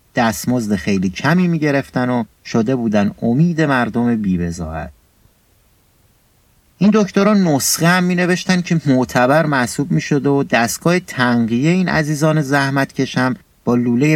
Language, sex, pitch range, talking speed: Persian, male, 110-160 Hz, 130 wpm